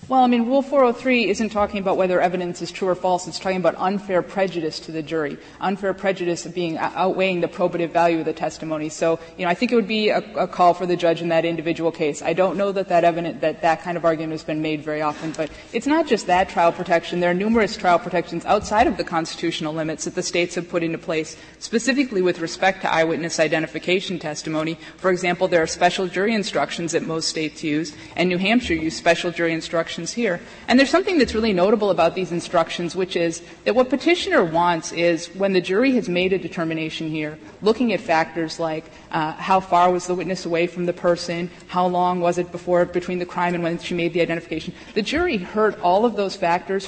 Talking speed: 225 wpm